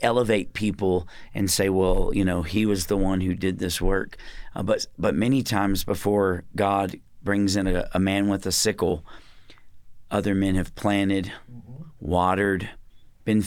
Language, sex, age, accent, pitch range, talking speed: English, male, 40-59, American, 90-105 Hz, 160 wpm